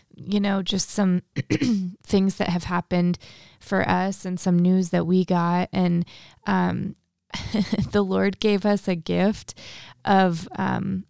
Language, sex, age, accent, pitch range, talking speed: English, female, 20-39, American, 175-195 Hz, 140 wpm